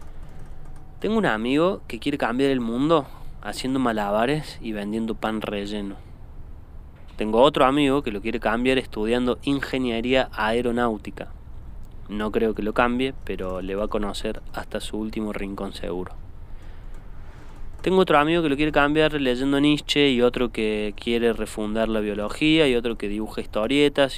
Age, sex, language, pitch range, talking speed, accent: 20-39, male, Spanish, 105-130 Hz, 150 wpm, Argentinian